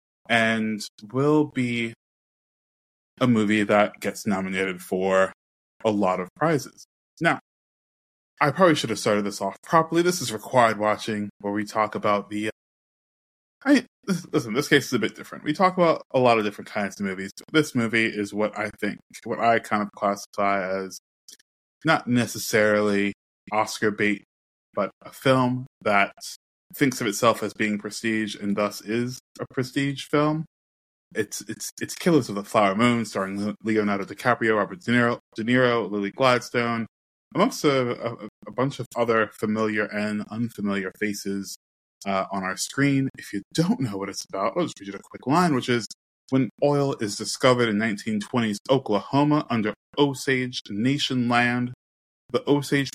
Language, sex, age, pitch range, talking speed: English, male, 20-39, 100-125 Hz, 165 wpm